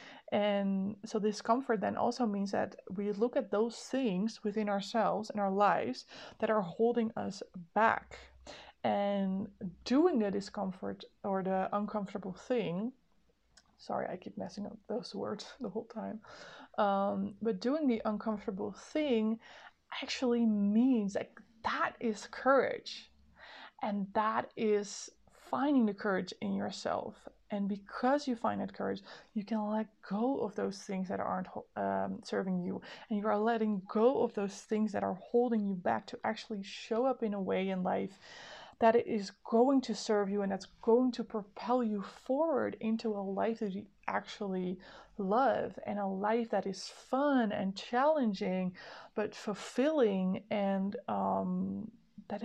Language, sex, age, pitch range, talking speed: English, female, 20-39, 200-230 Hz, 155 wpm